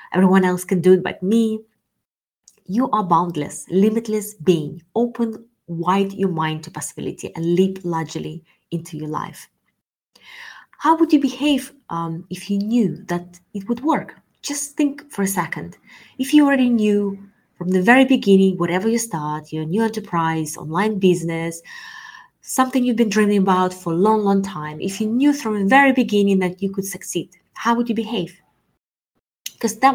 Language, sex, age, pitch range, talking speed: English, female, 20-39, 170-230 Hz, 165 wpm